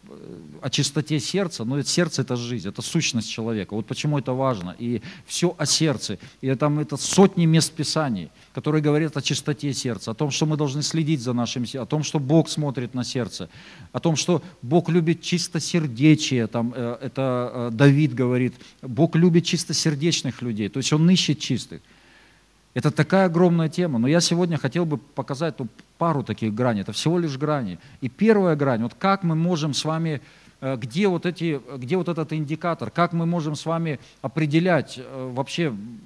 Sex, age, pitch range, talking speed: male, 50-69, 125-165 Hz, 175 wpm